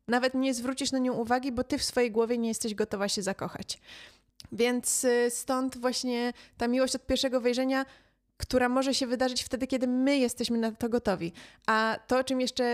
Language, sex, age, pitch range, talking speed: Polish, female, 20-39, 220-255 Hz, 190 wpm